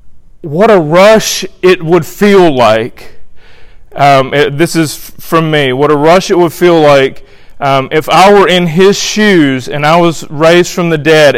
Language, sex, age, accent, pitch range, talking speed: English, male, 30-49, American, 150-195 Hz, 175 wpm